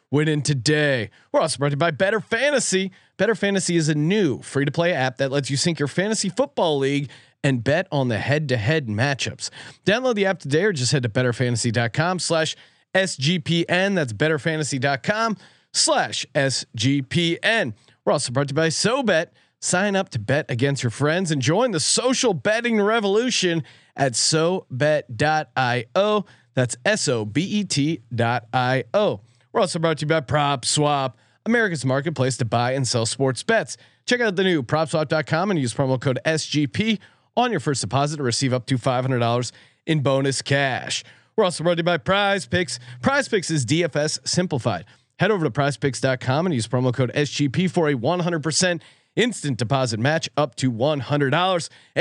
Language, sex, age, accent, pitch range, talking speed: English, male, 30-49, American, 130-180 Hz, 180 wpm